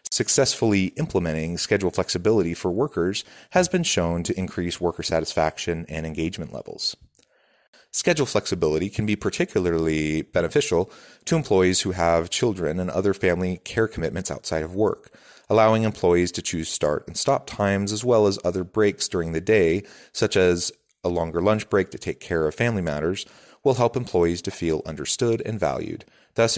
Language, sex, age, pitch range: English, male, 30-49, 85-110 Hz